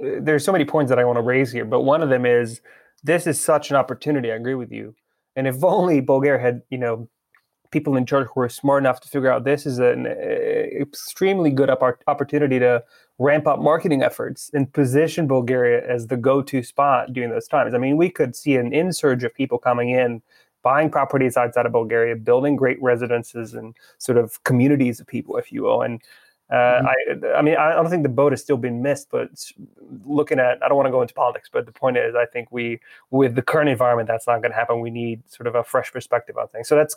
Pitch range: 120-150 Hz